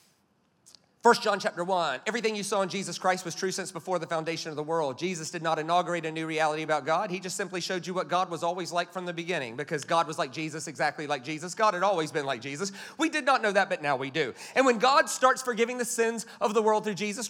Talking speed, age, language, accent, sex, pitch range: 265 wpm, 30-49, English, American, male, 175-250 Hz